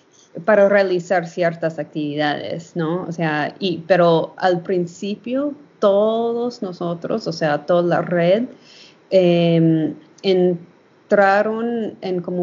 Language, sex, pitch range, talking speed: Spanish, female, 165-185 Hz, 105 wpm